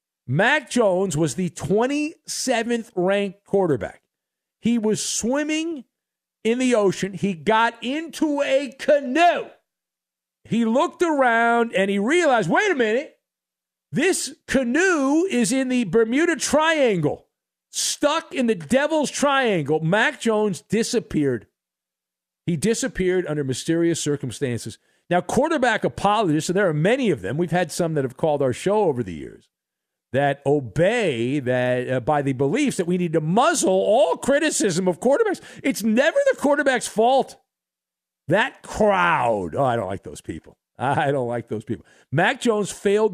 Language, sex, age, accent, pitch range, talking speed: English, male, 50-69, American, 155-245 Hz, 145 wpm